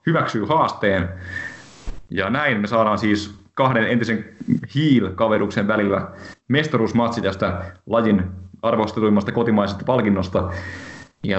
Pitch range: 105-140 Hz